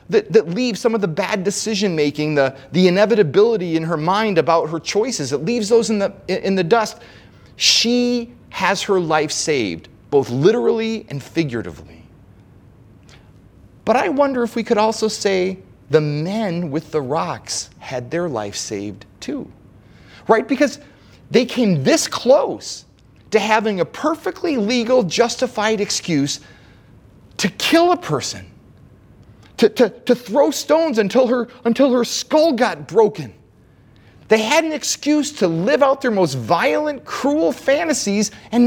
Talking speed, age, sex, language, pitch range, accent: 145 wpm, 30-49, male, English, 175-270 Hz, American